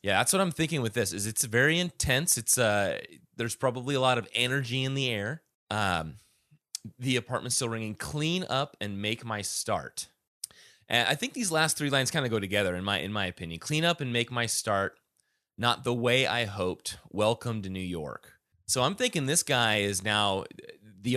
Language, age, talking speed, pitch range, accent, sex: English, 30-49, 205 wpm, 105-130 Hz, American, male